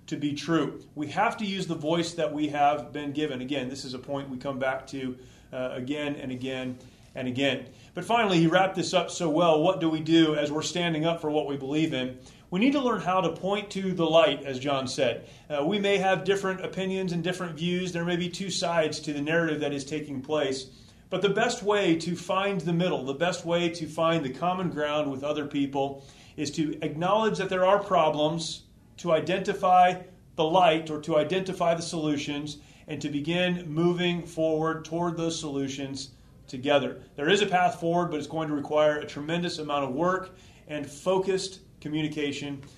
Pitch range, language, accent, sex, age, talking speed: 140-180 Hz, English, American, male, 30-49, 205 wpm